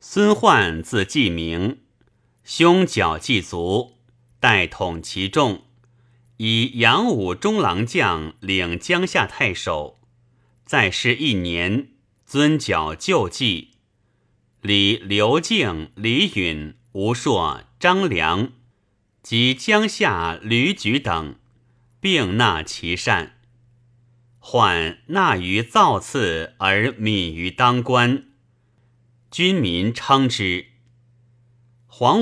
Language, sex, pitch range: Chinese, male, 100-125 Hz